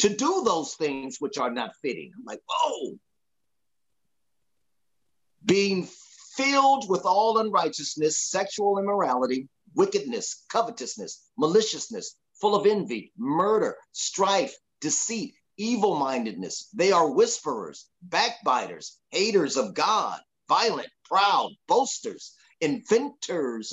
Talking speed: 100 wpm